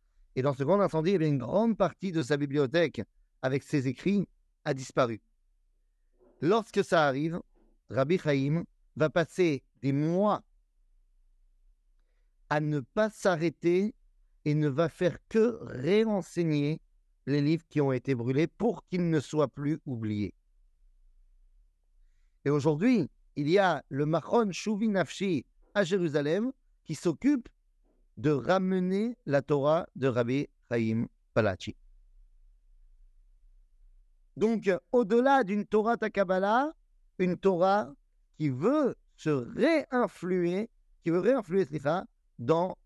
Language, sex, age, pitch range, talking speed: French, male, 50-69, 120-190 Hz, 115 wpm